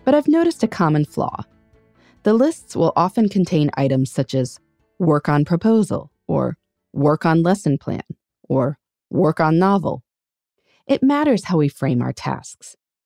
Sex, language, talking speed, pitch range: female, English, 150 wpm, 140-200 Hz